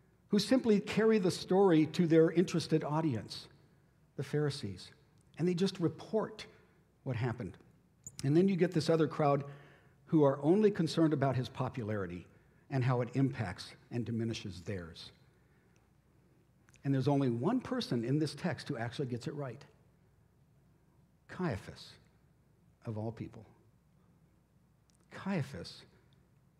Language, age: English, 60-79